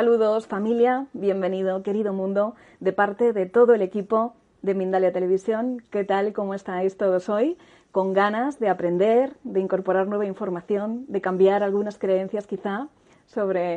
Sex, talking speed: female, 150 wpm